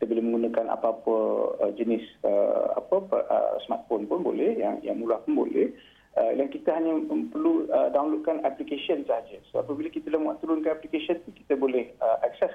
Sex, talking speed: male, 170 wpm